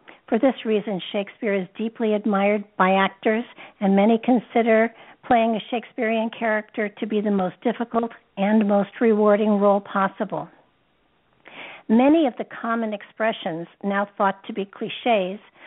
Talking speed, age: 140 wpm, 60-79